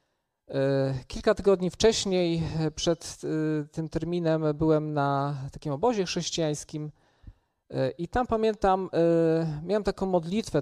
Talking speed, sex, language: 95 wpm, male, Polish